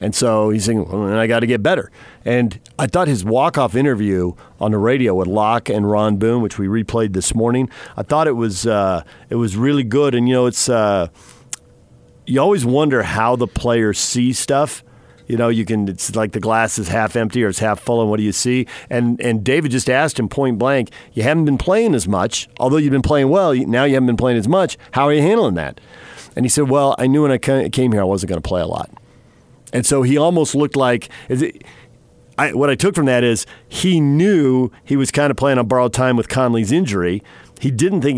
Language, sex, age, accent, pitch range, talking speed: English, male, 50-69, American, 105-135 Hz, 235 wpm